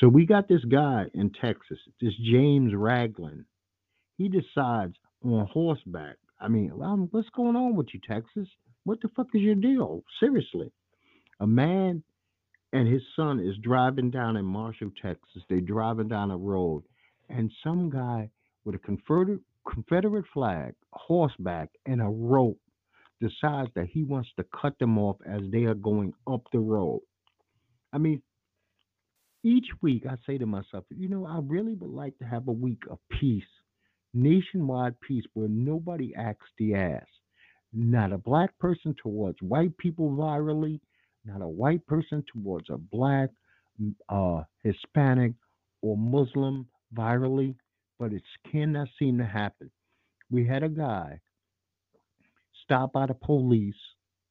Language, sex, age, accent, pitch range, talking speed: English, male, 50-69, American, 105-150 Hz, 145 wpm